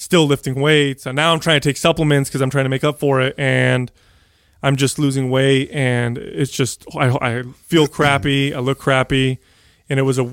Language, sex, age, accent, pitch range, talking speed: English, male, 30-49, American, 120-140 Hz, 215 wpm